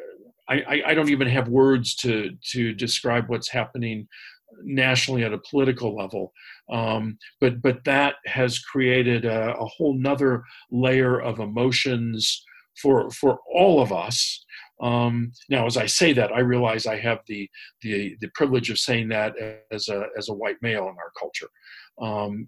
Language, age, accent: English, 50-69, American